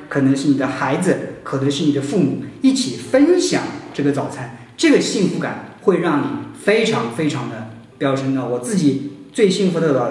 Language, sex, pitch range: Chinese, male, 135-170 Hz